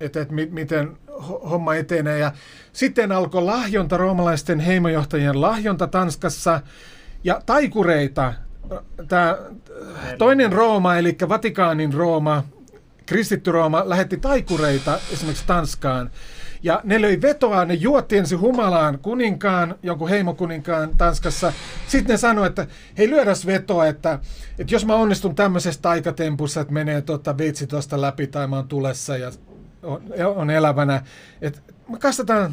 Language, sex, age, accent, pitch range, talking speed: Finnish, male, 30-49, native, 150-210 Hz, 125 wpm